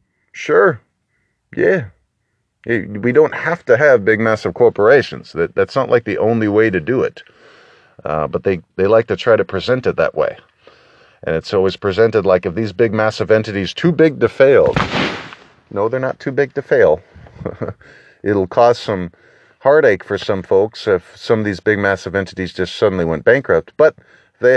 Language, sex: English, male